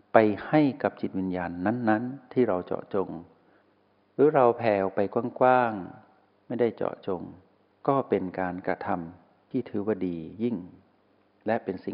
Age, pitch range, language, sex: 60-79, 95-120 Hz, Thai, male